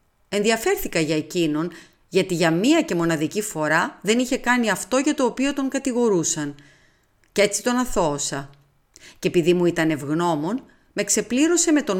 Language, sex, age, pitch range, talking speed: Greek, female, 30-49, 160-250 Hz, 155 wpm